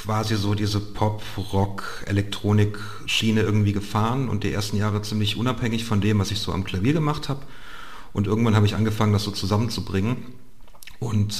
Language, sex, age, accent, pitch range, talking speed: German, male, 40-59, German, 95-110 Hz, 160 wpm